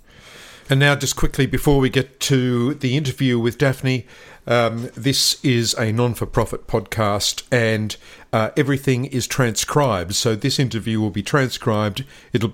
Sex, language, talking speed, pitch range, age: male, English, 145 wpm, 110-140 Hz, 50-69